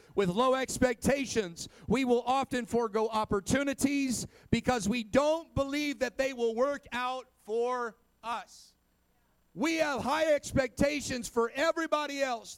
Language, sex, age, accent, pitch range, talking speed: English, male, 40-59, American, 210-260 Hz, 125 wpm